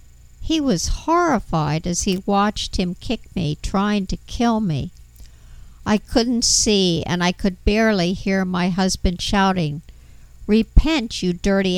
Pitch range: 170-205 Hz